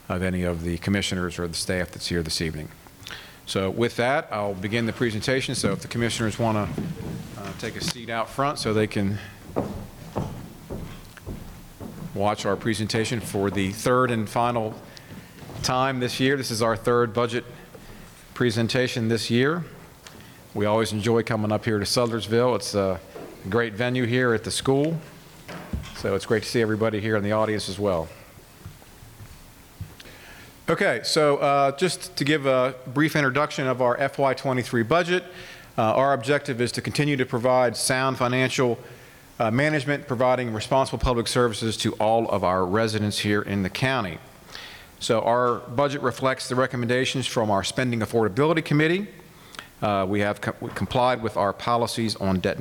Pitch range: 105-130 Hz